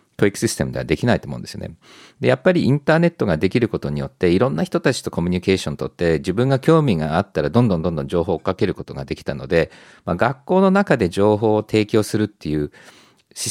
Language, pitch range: Japanese, 85-125 Hz